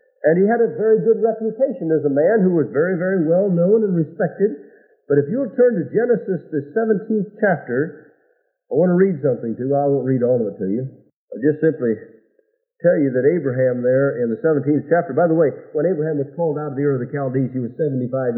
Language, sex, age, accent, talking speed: English, male, 50-69, American, 230 wpm